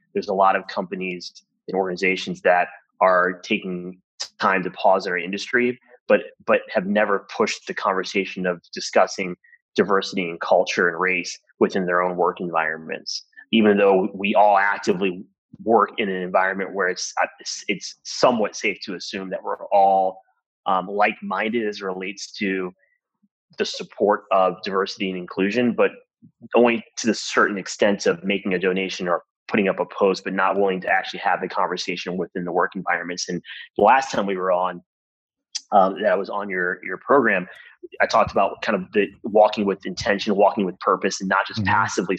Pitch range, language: 90-105 Hz, English